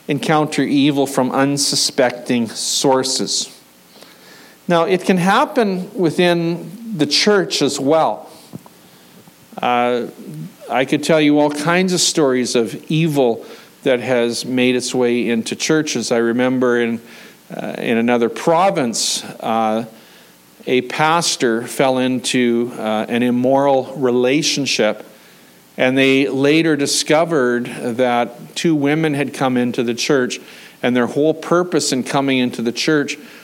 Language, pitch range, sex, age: English, 120-145 Hz, male, 50-69